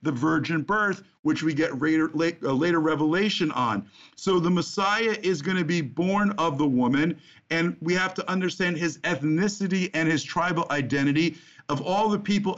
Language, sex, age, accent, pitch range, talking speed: English, male, 50-69, American, 130-170 Hz, 175 wpm